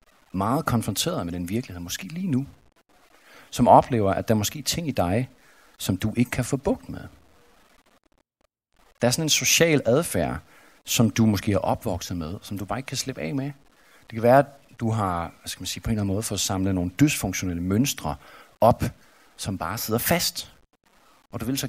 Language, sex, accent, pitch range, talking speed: Danish, male, native, 95-130 Hz, 200 wpm